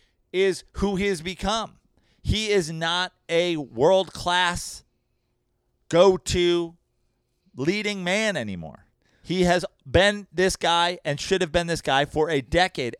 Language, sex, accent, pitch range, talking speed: English, male, American, 165-220 Hz, 130 wpm